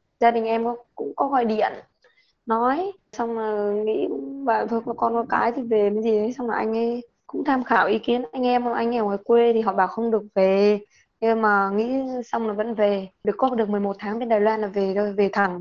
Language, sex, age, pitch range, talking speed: Vietnamese, female, 20-39, 210-245 Hz, 230 wpm